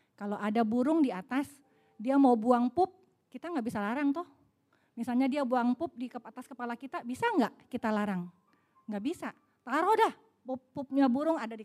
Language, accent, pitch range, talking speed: Indonesian, native, 220-290 Hz, 170 wpm